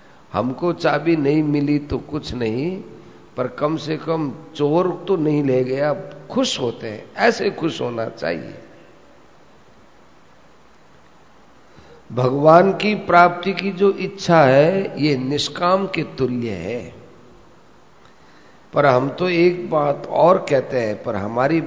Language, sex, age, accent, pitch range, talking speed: Hindi, male, 50-69, native, 130-175 Hz, 125 wpm